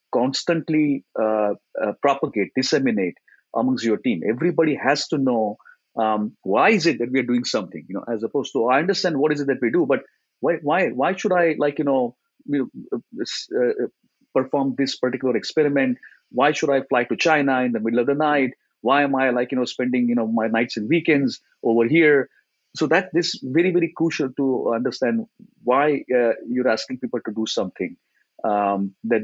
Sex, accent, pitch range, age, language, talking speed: male, Indian, 125-165 Hz, 50-69, English, 200 wpm